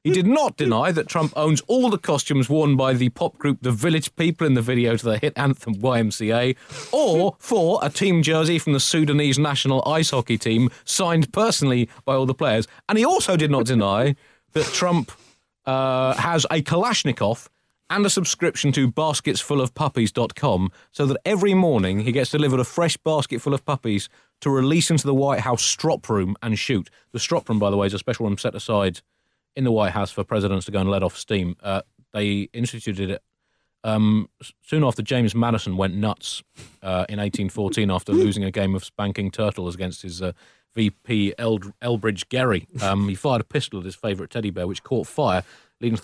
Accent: British